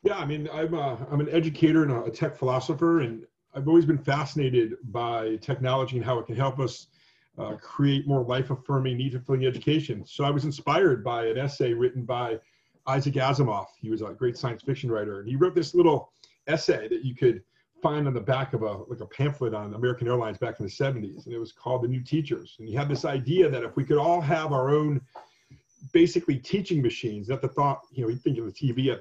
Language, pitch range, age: English, 120-145 Hz, 40-59